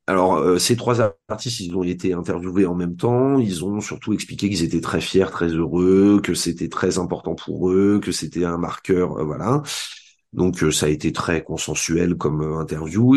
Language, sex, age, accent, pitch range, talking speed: French, male, 40-59, French, 85-110 Hz, 195 wpm